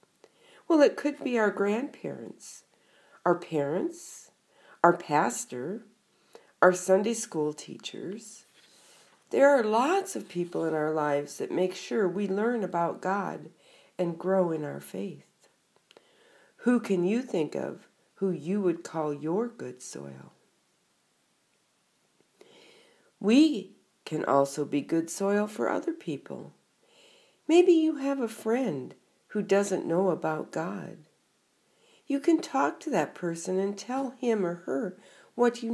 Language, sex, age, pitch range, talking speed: English, female, 50-69, 180-280 Hz, 130 wpm